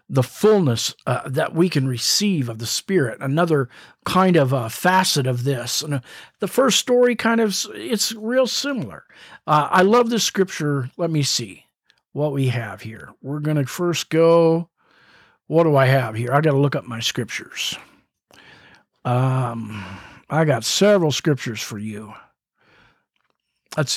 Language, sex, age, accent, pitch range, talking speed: English, male, 50-69, American, 135-190 Hz, 160 wpm